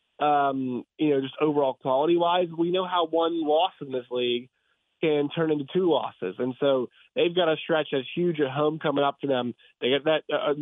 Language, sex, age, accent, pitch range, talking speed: English, male, 30-49, American, 140-175 Hz, 215 wpm